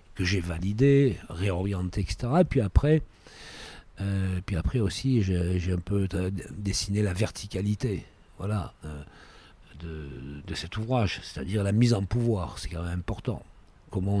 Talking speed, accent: 150 wpm, French